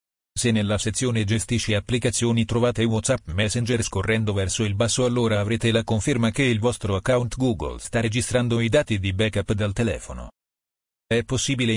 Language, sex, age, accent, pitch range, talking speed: Italian, male, 40-59, native, 105-120 Hz, 160 wpm